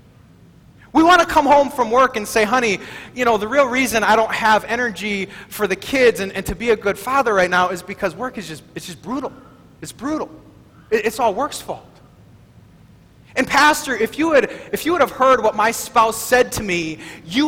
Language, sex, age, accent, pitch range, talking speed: English, male, 30-49, American, 200-275 Hz, 215 wpm